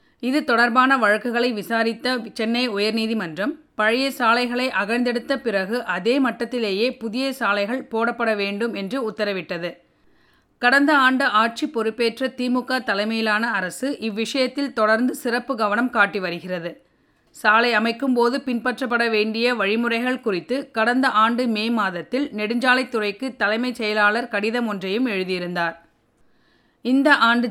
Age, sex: 30-49, female